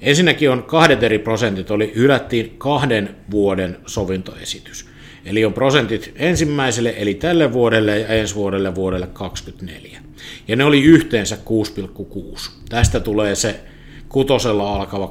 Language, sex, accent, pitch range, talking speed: Finnish, male, native, 100-125 Hz, 125 wpm